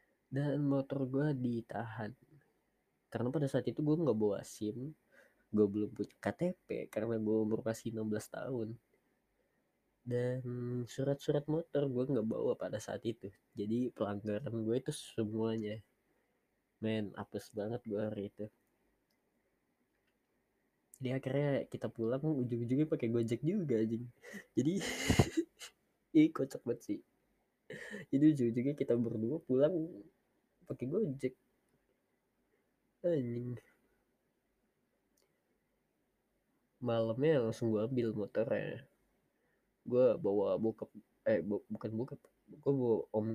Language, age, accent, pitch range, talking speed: Indonesian, 20-39, native, 110-140 Hz, 110 wpm